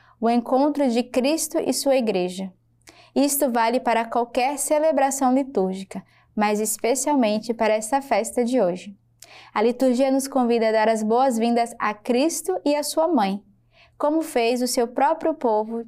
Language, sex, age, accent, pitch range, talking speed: Portuguese, female, 10-29, Brazilian, 215-255 Hz, 150 wpm